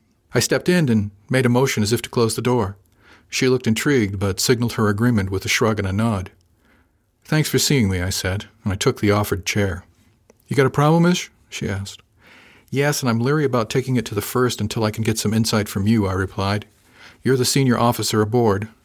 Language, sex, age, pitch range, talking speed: English, male, 50-69, 100-120 Hz, 225 wpm